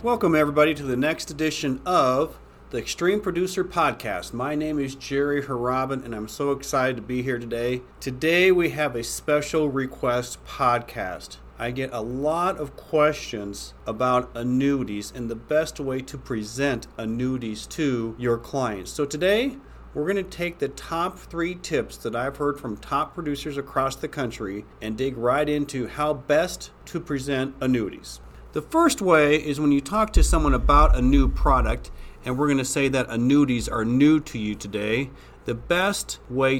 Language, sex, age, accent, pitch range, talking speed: English, male, 40-59, American, 120-150 Hz, 170 wpm